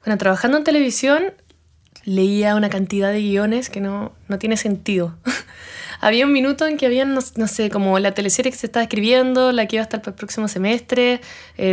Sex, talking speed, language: female, 195 wpm, Spanish